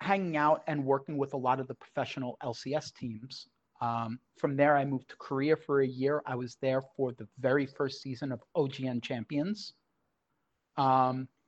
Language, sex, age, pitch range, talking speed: English, male, 40-59, 130-150 Hz, 180 wpm